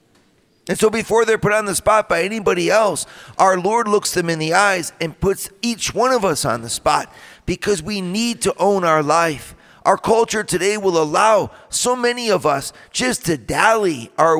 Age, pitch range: 40-59, 150-190 Hz